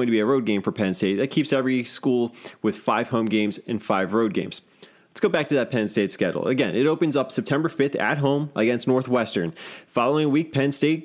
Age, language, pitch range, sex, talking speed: 30-49, English, 105-135 Hz, male, 230 wpm